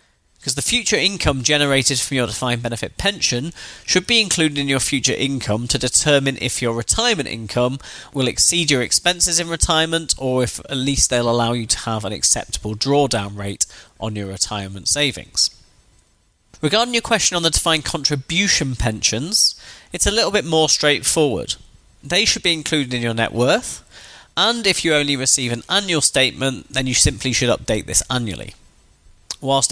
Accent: British